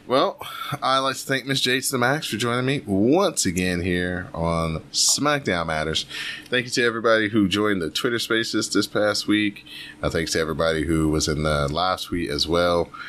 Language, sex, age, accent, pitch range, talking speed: English, male, 30-49, American, 75-90 Hz, 195 wpm